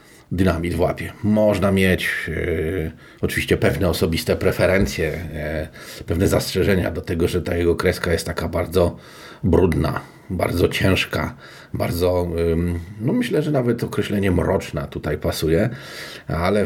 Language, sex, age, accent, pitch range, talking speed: Polish, male, 40-59, native, 85-105 Hz, 130 wpm